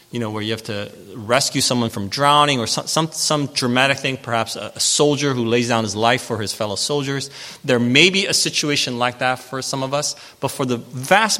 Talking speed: 225 wpm